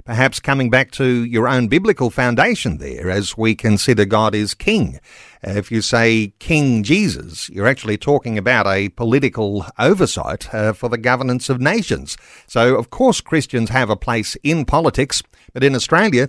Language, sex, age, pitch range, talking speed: English, male, 50-69, 115-145 Hz, 165 wpm